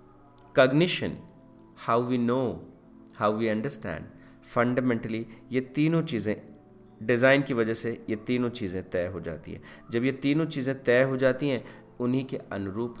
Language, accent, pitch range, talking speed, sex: Hindi, native, 95-135 Hz, 150 wpm, male